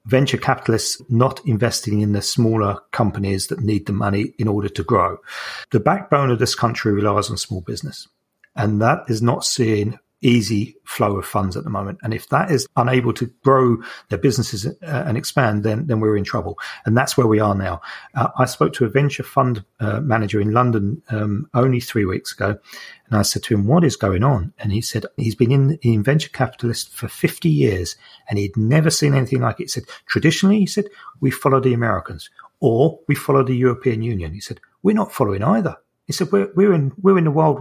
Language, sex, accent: English, male, British